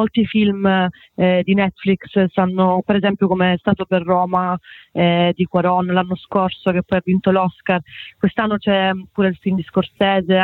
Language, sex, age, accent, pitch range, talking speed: Italian, female, 30-49, native, 175-195 Hz, 180 wpm